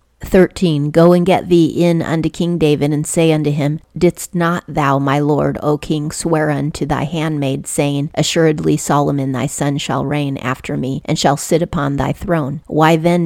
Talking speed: 185 wpm